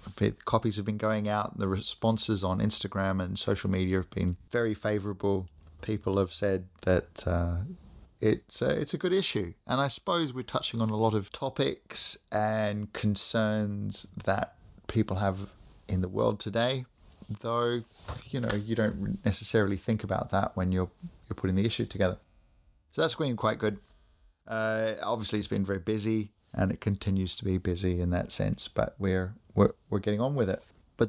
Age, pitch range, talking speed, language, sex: 30-49, 95-110 Hz, 175 wpm, English, male